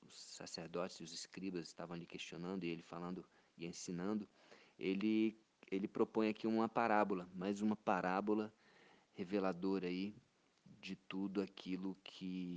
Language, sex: Portuguese, male